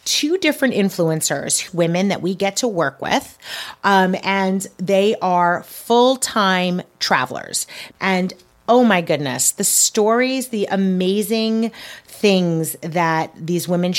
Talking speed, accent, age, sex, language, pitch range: 125 wpm, American, 30-49, female, English, 170-210 Hz